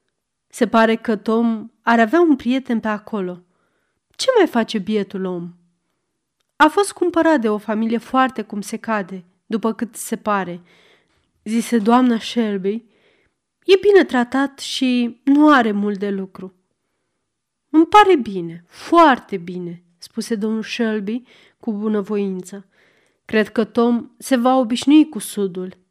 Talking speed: 135 wpm